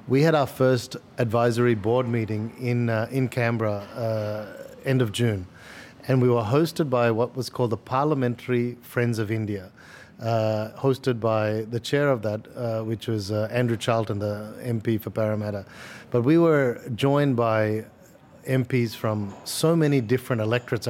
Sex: male